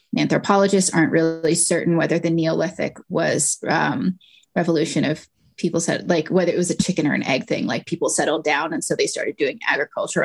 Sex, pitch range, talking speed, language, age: female, 175-210 Hz, 195 wpm, English, 20-39